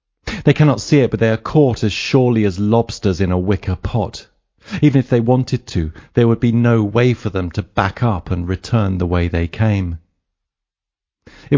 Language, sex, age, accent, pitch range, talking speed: English, male, 40-59, British, 95-120 Hz, 195 wpm